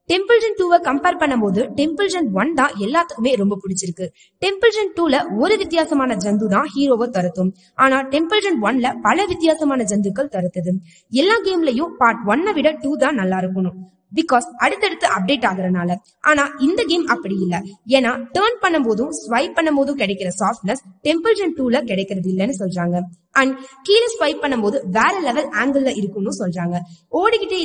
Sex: female